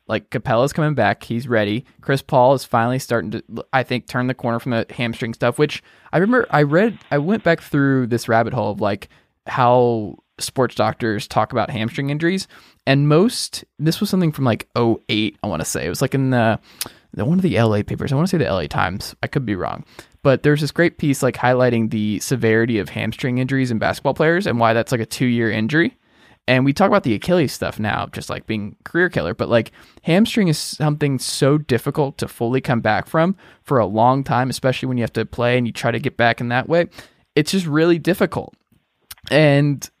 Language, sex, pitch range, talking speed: English, male, 115-160 Hz, 220 wpm